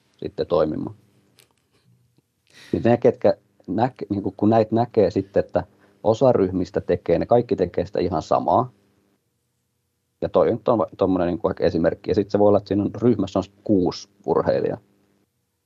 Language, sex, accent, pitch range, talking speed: Finnish, male, native, 95-110 Hz, 140 wpm